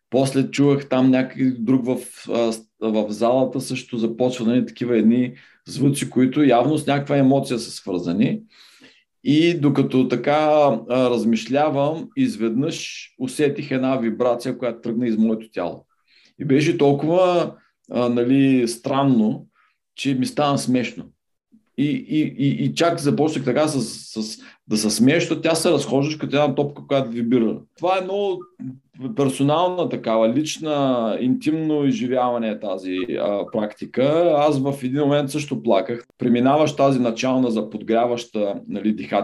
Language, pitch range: Bulgarian, 115-140 Hz